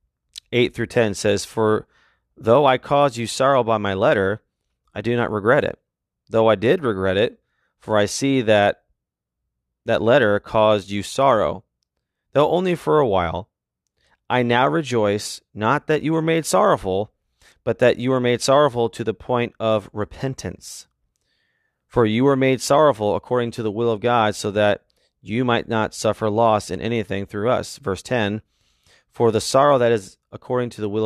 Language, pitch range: English, 105-120 Hz